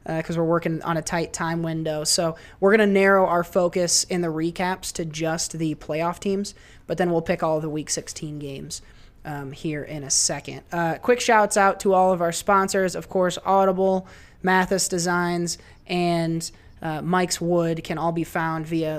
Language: English